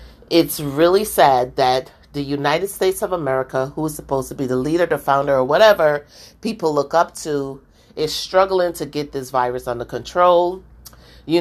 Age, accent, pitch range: 30-49, American, 140-185 Hz